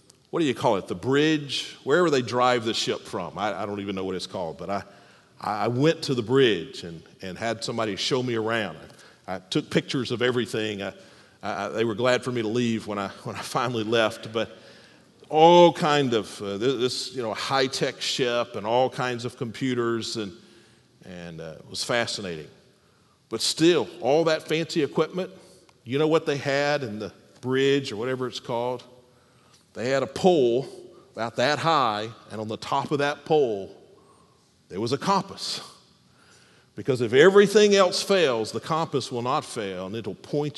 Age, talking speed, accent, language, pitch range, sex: 40-59, 190 wpm, American, English, 115-145 Hz, male